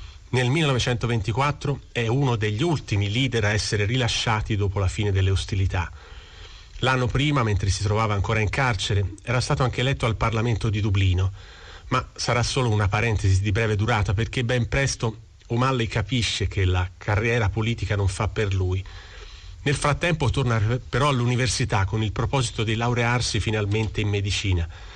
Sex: male